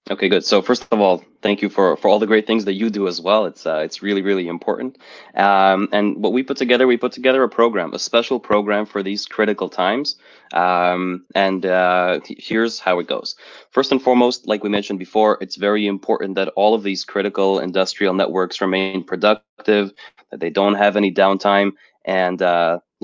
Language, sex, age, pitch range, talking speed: English, male, 20-39, 95-110 Hz, 200 wpm